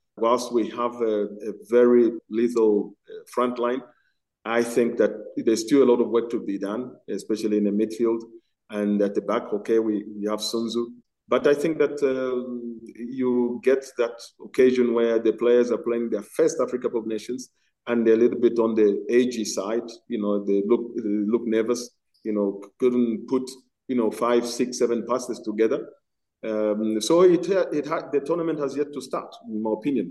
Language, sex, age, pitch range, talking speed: English, male, 40-59, 110-130 Hz, 190 wpm